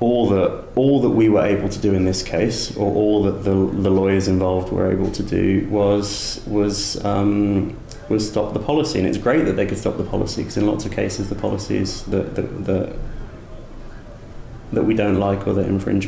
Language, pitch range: English, 95-105 Hz